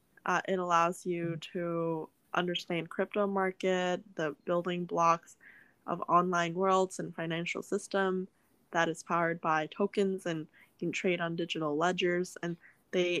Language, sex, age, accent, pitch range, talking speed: English, female, 10-29, American, 170-185 Hz, 135 wpm